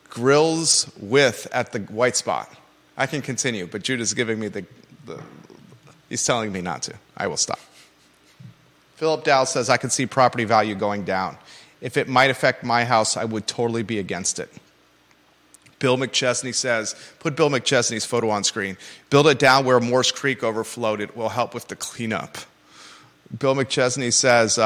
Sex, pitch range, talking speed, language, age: male, 110-130 Hz, 170 wpm, English, 30-49